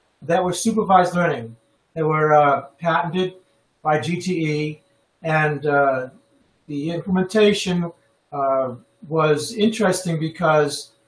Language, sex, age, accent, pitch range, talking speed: English, male, 60-79, American, 150-185 Hz, 95 wpm